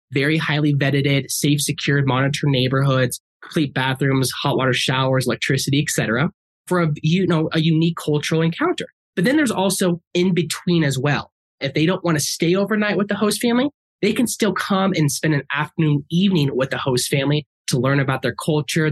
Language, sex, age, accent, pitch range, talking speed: English, male, 20-39, American, 140-175 Hz, 180 wpm